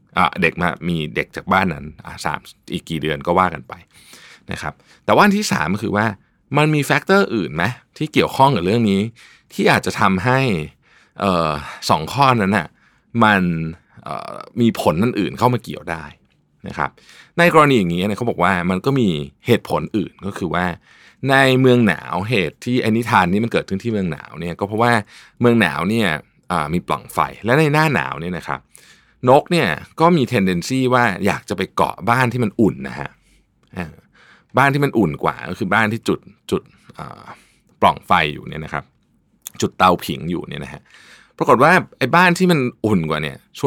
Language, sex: Thai, male